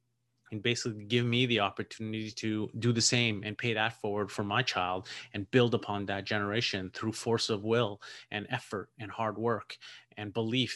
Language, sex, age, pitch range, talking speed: English, male, 30-49, 105-120 Hz, 185 wpm